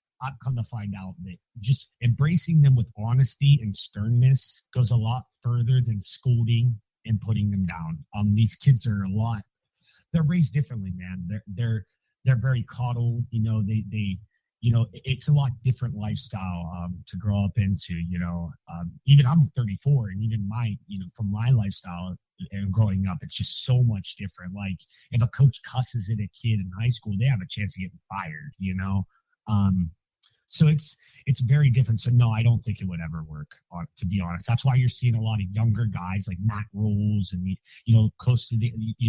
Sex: male